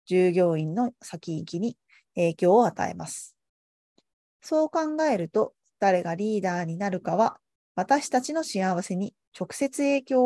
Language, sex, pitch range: Japanese, female, 160-225 Hz